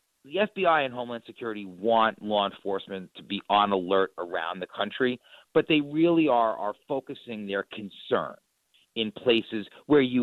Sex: male